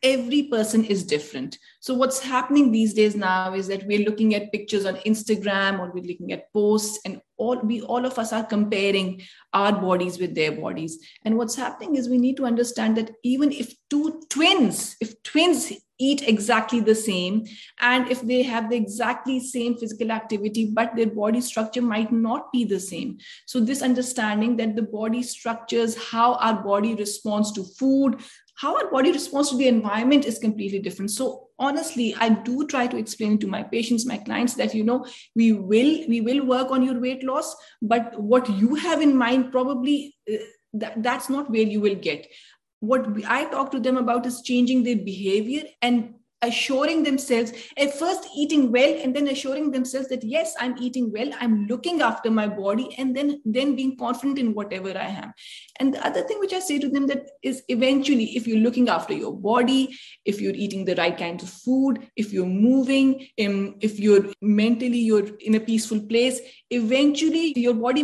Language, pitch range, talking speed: English, 215-265 Hz, 190 wpm